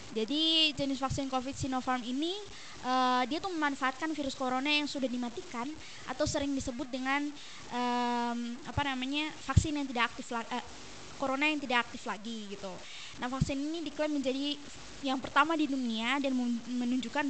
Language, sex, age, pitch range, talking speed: Indonesian, female, 20-39, 245-290 Hz, 155 wpm